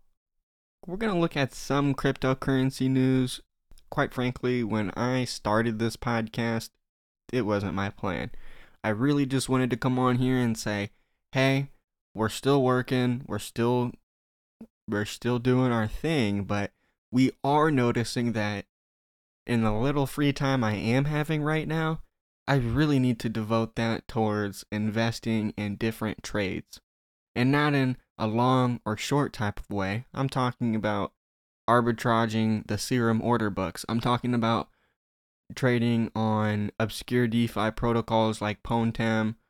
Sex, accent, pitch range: male, American, 105-125 Hz